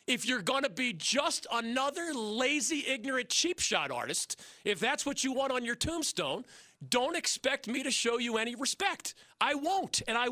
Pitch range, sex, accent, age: 205-285 Hz, male, American, 40-59